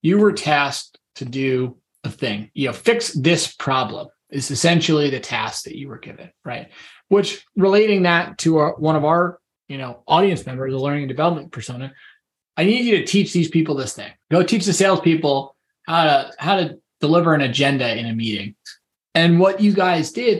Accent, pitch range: American, 130-170 Hz